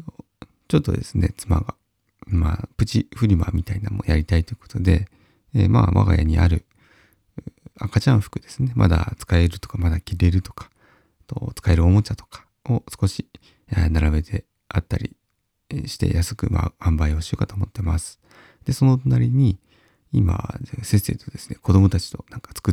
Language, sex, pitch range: Japanese, male, 85-110 Hz